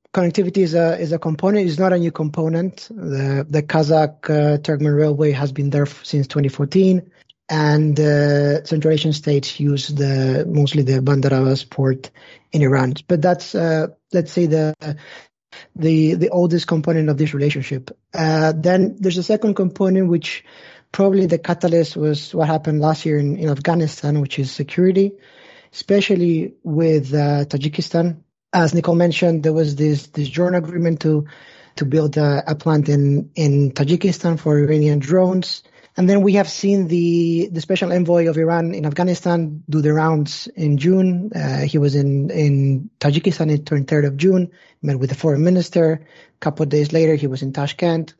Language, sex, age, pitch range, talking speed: English, male, 20-39, 145-170 Hz, 170 wpm